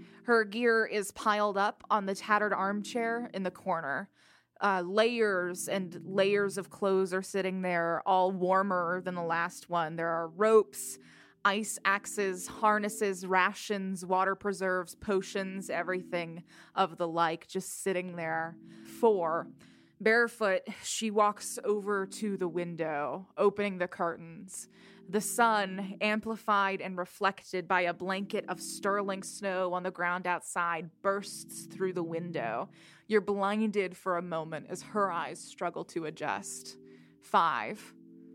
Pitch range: 175-200 Hz